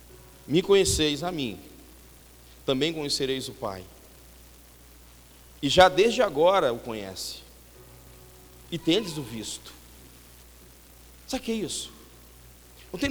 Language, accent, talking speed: Portuguese, Brazilian, 115 wpm